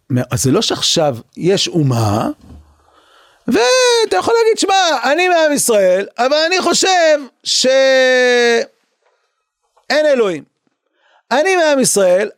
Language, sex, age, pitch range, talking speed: Hebrew, male, 40-59, 185-300 Hz, 95 wpm